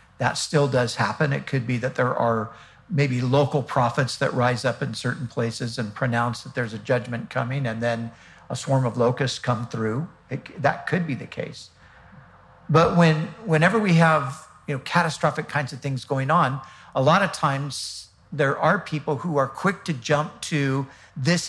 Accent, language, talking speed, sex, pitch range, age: American, English, 185 wpm, male, 120-150 Hz, 50-69